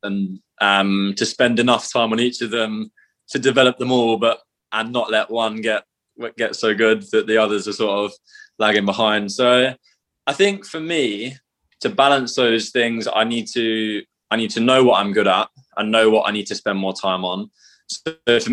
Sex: male